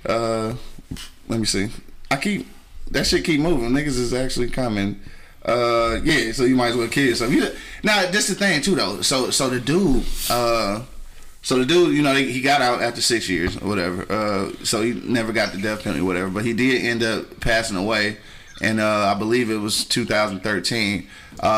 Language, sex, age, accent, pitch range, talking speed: English, male, 20-39, American, 110-135 Hz, 205 wpm